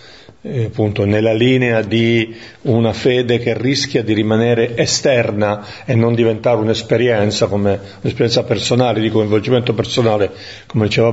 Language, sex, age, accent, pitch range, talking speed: Italian, male, 40-59, native, 110-125 Hz, 125 wpm